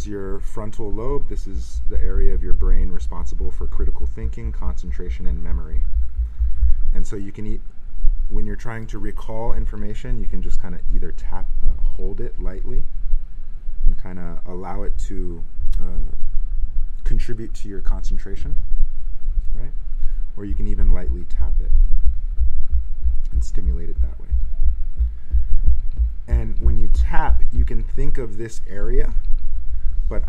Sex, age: male, 30-49